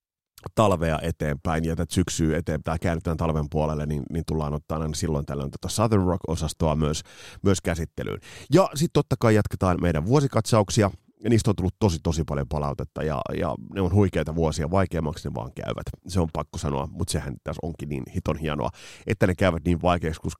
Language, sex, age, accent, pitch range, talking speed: Finnish, male, 30-49, native, 80-110 Hz, 180 wpm